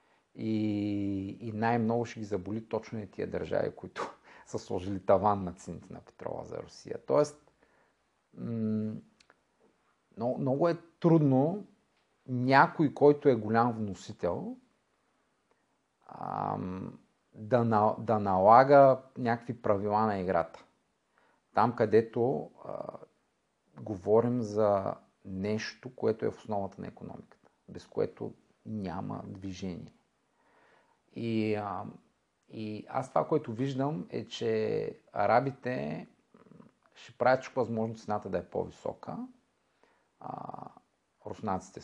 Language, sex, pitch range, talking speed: Bulgarian, male, 105-135 Hz, 105 wpm